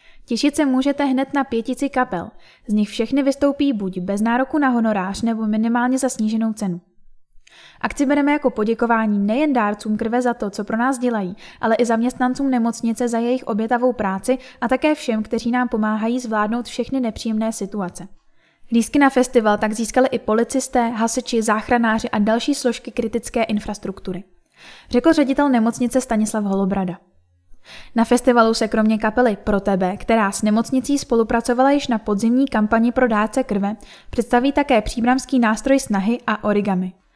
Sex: female